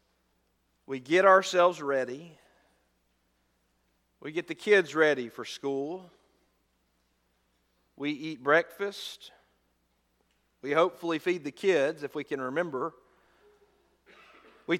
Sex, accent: male, American